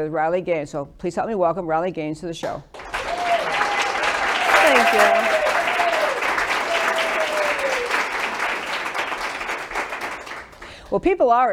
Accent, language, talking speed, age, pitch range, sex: American, English, 90 wpm, 60-79, 185-250 Hz, female